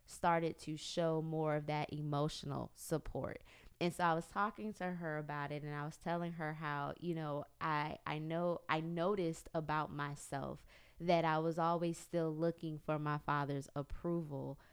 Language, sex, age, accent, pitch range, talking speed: English, female, 20-39, American, 150-180 Hz, 170 wpm